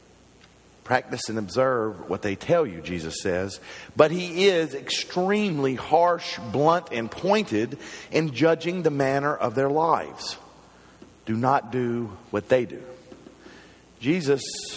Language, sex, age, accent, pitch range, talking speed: English, male, 50-69, American, 110-150 Hz, 125 wpm